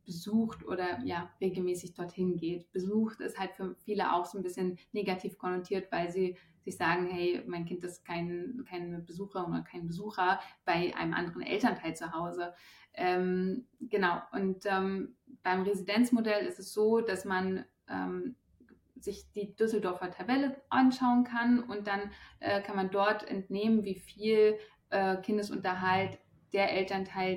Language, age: German, 20-39